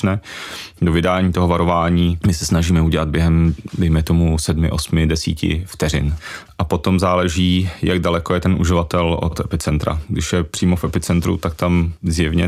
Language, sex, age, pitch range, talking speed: Czech, male, 30-49, 85-90 Hz, 160 wpm